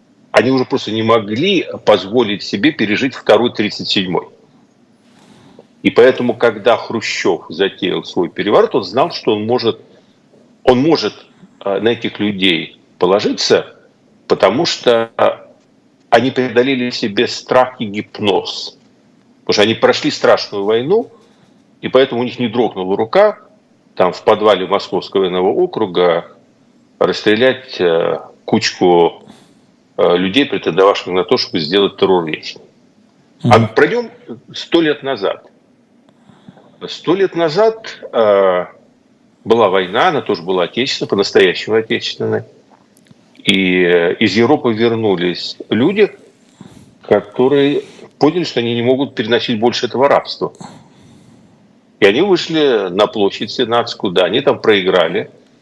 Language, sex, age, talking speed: Russian, male, 50-69, 115 wpm